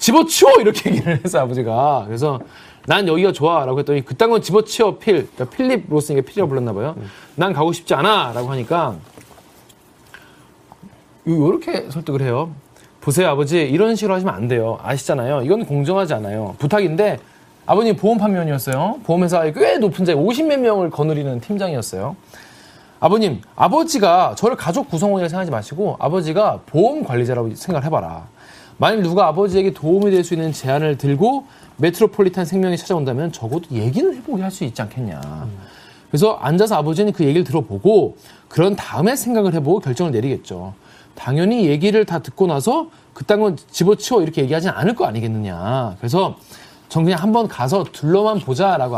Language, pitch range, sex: Korean, 135-200 Hz, male